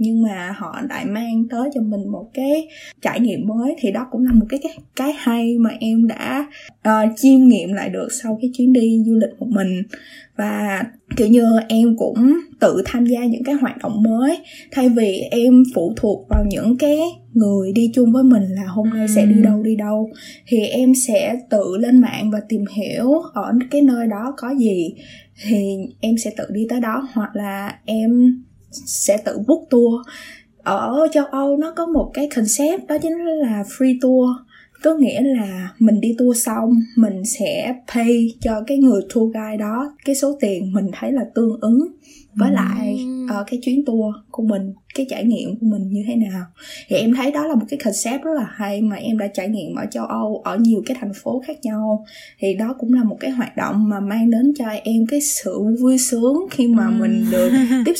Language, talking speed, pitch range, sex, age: Vietnamese, 210 wpm, 215-270 Hz, female, 10-29